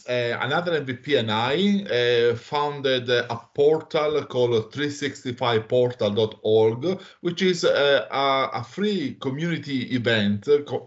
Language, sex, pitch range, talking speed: English, male, 110-140 Hz, 115 wpm